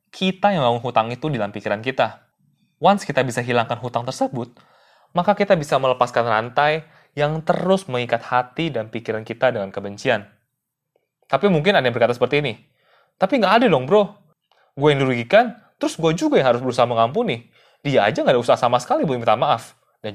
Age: 20-39